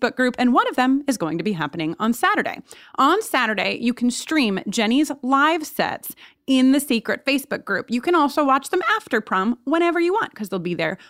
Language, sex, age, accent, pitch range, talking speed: English, female, 30-49, American, 210-290 Hz, 210 wpm